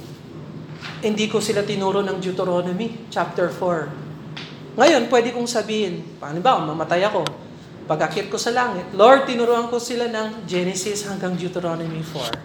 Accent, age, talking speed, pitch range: native, 40-59, 130 wpm, 200-250 Hz